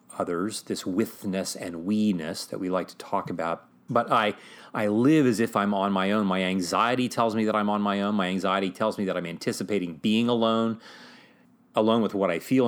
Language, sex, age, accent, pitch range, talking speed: English, male, 30-49, American, 105-155 Hz, 210 wpm